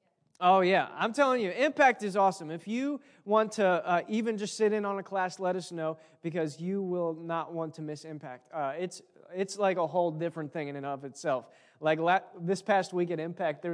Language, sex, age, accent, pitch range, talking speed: English, male, 20-39, American, 160-205 Hz, 220 wpm